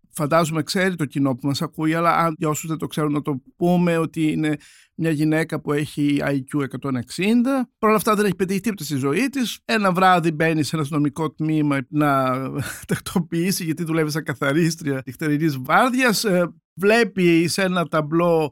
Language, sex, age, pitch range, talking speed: Greek, male, 50-69, 150-210 Hz, 175 wpm